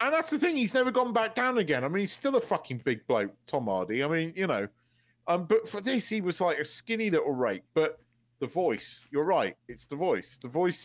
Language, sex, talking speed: English, male, 250 wpm